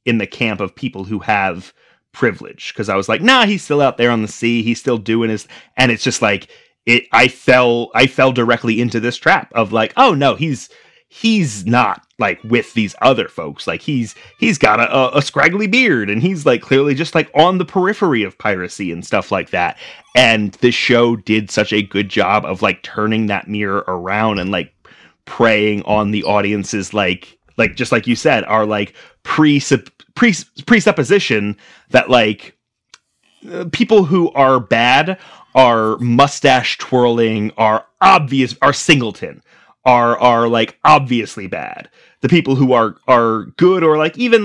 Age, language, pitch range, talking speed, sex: 30-49, English, 110-165 Hz, 180 wpm, male